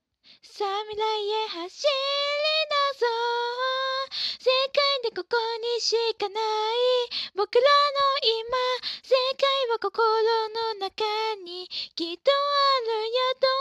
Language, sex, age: Japanese, female, 20-39